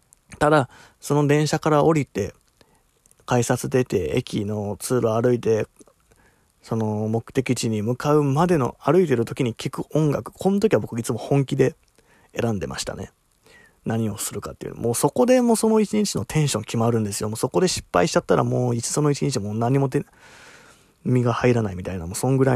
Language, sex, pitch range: Japanese, male, 110-150 Hz